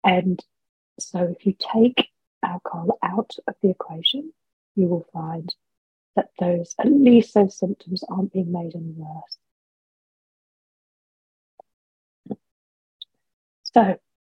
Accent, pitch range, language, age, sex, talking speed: British, 175-210 Hz, English, 30-49, female, 105 wpm